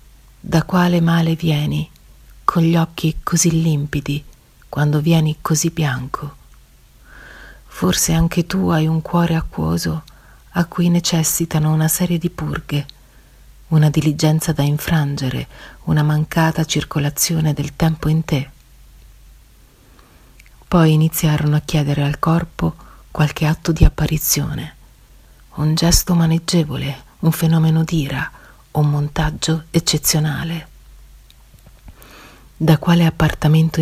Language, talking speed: Italian, 105 wpm